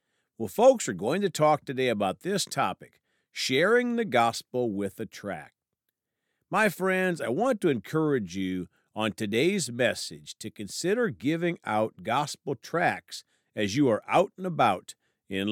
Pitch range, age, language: 105-170 Hz, 50-69, English